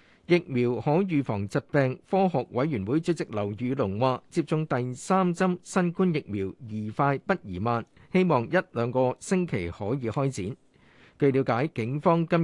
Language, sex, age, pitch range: Chinese, male, 50-69, 120-165 Hz